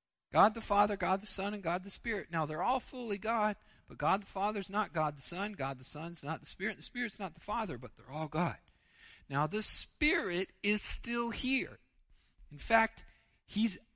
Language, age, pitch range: English, 40-59, 180-240 Hz